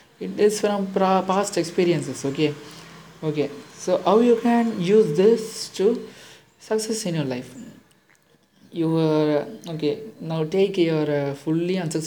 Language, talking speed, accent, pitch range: Tamil, 140 wpm, native, 150-190 Hz